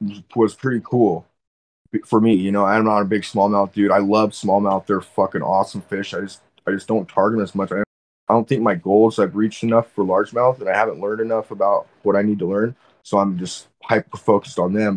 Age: 20-39